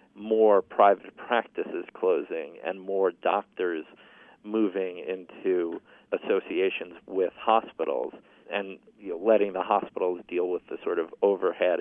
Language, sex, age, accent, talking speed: English, male, 40-59, American, 120 wpm